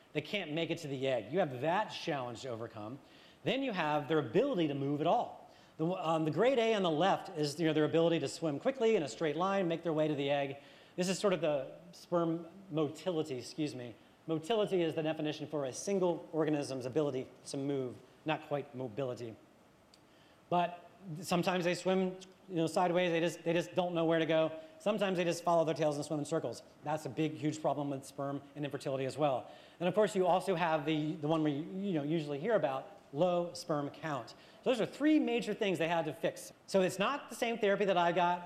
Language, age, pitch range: English, 30-49, 150-185 Hz